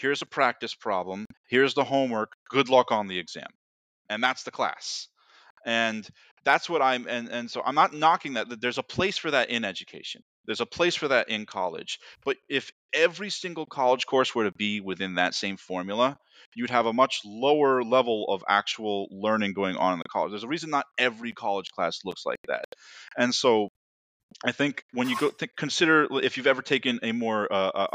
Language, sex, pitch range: English, male, 105-140 Hz